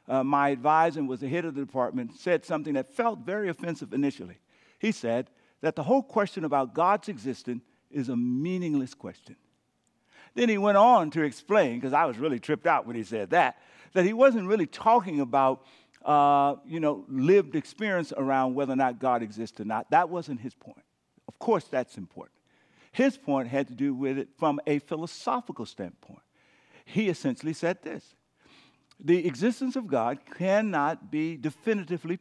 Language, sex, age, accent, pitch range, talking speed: English, male, 50-69, American, 140-200 Hz, 175 wpm